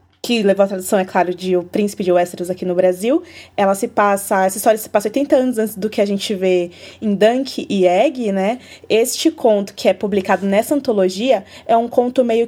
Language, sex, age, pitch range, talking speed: Portuguese, female, 20-39, 185-230 Hz, 215 wpm